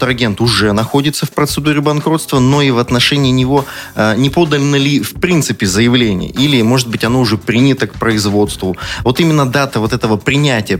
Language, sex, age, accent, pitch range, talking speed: Russian, male, 30-49, native, 110-140 Hz, 170 wpm